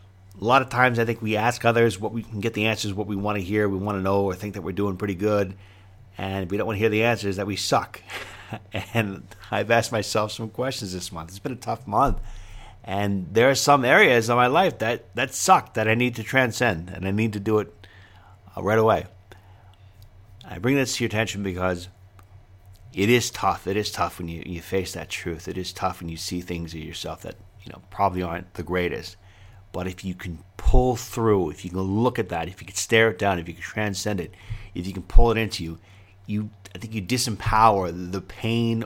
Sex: male